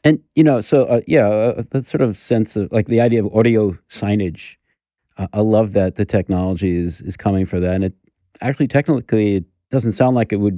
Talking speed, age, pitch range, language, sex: 220 wpm, 40-59, 95-115 Hz, English, male